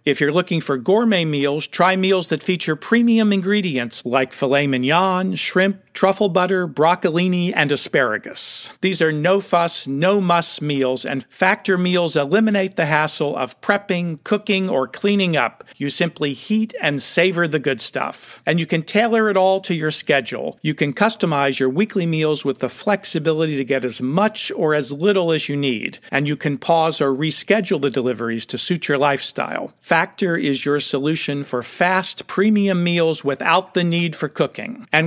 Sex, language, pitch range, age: male, English, 145-190 Hz, 50-69